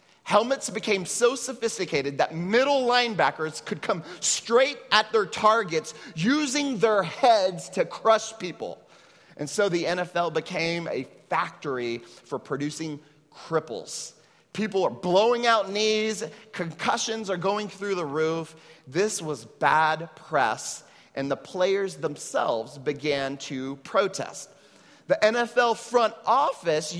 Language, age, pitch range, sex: English, 30-49, 155-220 Hz, male